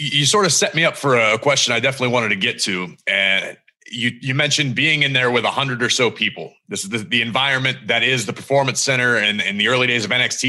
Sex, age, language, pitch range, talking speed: male, 30-49, English, 120-150 Hz, 255 wpm